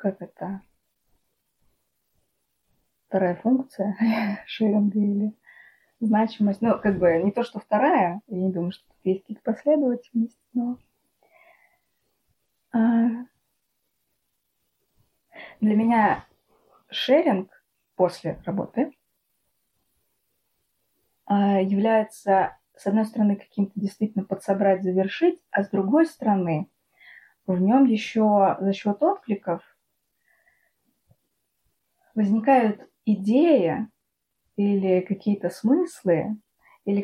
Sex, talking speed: female, 85 wpm